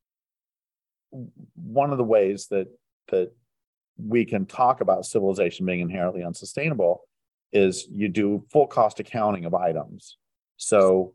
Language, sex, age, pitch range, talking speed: English, male, 40-59, 90-110 Hz, 125 wpm